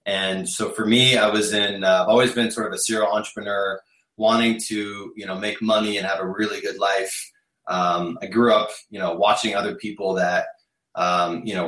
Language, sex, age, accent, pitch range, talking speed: English, male, 20-39, American, 90-110 Hz, 210 wpm